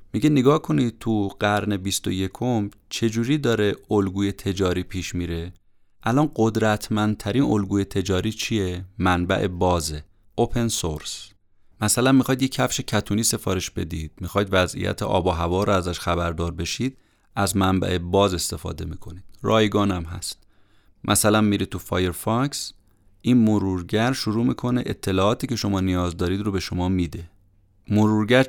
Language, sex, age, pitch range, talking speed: Persian, male, 30-49, 95-120 Hz, 135 wpm